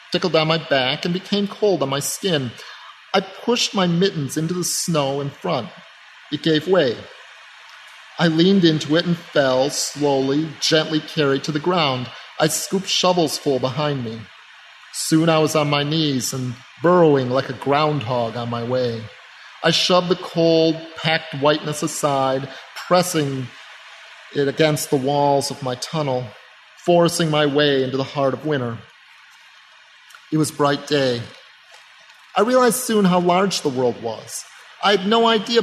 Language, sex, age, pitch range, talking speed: English, male, 40-59, 140-180 Hz, 155 wpm